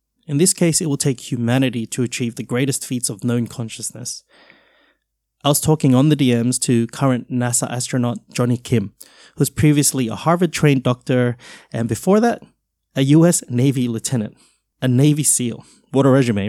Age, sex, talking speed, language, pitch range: 30-49, male, 165 wpm, English, 120-145 Hz